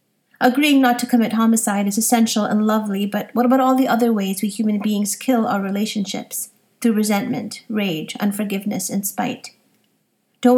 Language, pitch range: English, 200-235 Hz